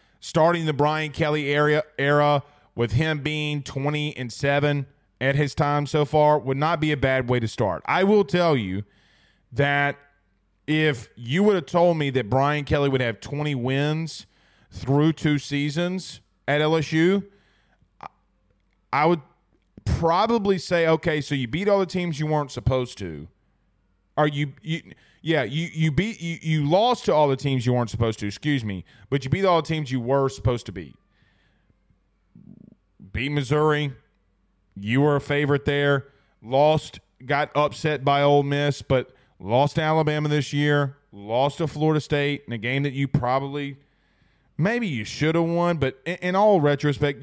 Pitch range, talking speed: 130-155 Hz, 165 wpm